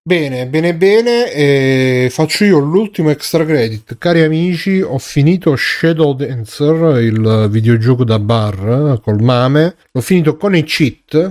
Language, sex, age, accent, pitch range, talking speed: Italian, male, 30-49, native, 120-155 Hz, 140 wpm